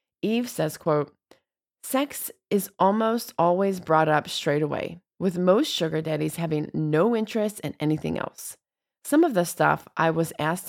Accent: American